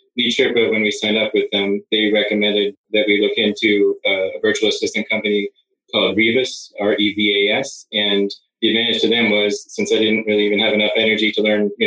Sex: male